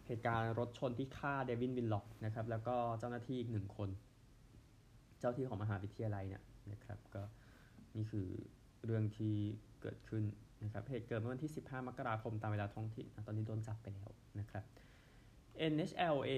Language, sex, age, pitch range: Thai, male, 20-39, 110-125 Hz